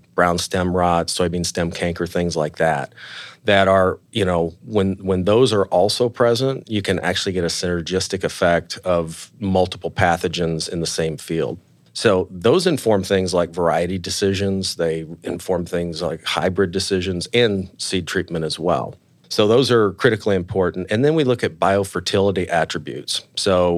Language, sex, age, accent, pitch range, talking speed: English, male, 40-59, American, 85-95 Hz, 160 wpm